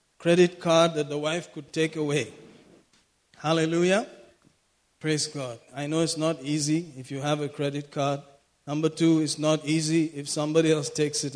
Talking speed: 170 wpm